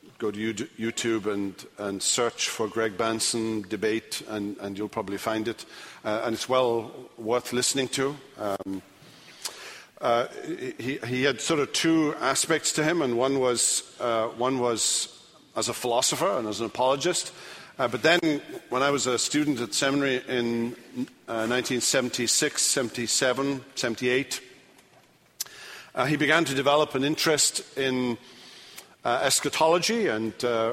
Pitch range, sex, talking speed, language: 115-145 Hz, male, 140 wpm, English